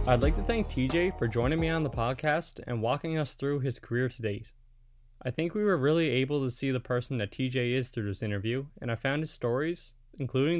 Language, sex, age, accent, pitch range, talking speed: English, male, 20-39, American, 120-145 Hz, 230 wpm